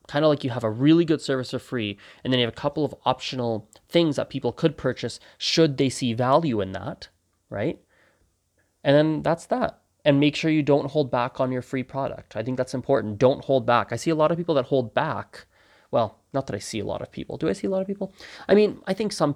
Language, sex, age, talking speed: English, male, 20-39, 255 wpm